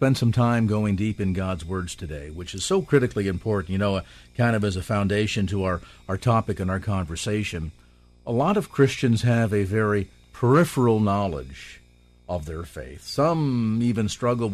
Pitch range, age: 95-130 Hz, 50-69